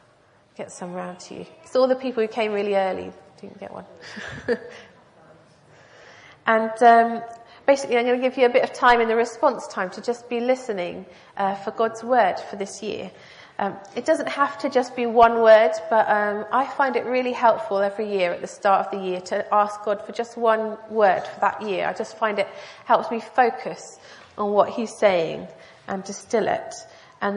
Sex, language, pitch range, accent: female, English, 200-240 Hz, British